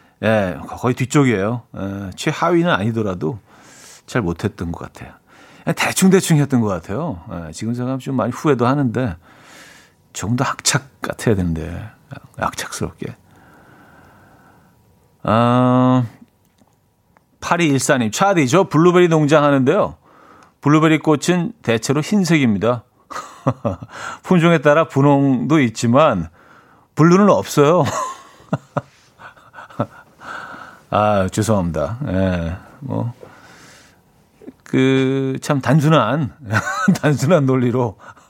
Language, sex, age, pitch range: Korean, male, 40-59, 105-155 Hz